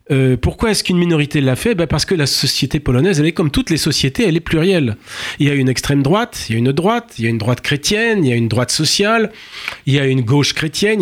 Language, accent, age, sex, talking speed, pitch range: French, French, 40-59, male, 280 wpm, 125-175 Hz